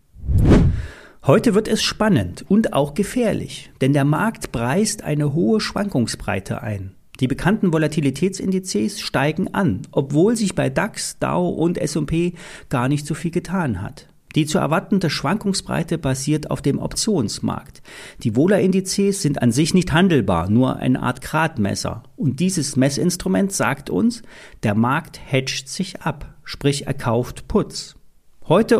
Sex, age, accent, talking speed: male, 40-59, German, 140 wpm